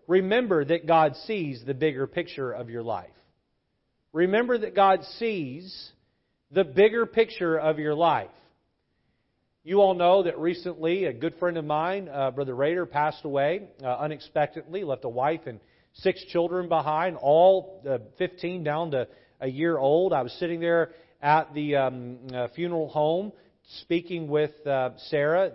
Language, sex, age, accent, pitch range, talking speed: English, male, 40-59, American, 125-180 Hz, 155 wpm